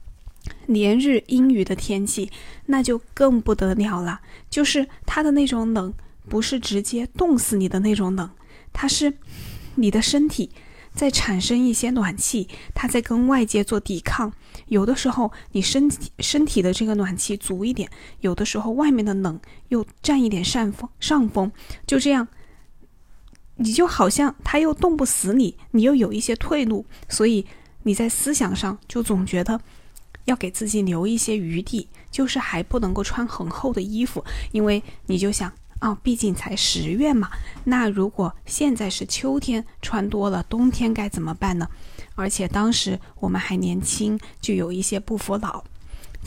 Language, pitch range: Chinese, 195-255 Hz